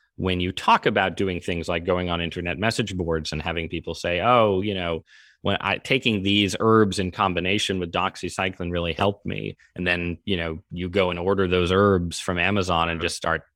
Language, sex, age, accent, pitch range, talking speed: English, male, 30-49, American, 85-100 Hz, 205 wpm